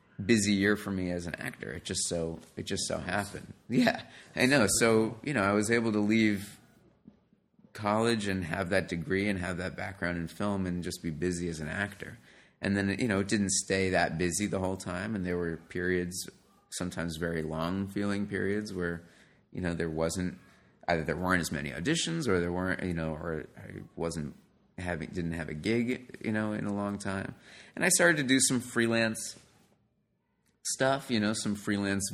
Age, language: 30-49, English